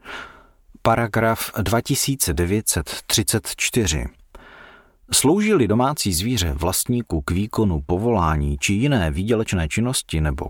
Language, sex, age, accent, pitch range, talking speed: Czech, male, 40-59, native, 85-115 Hz, 80 wpm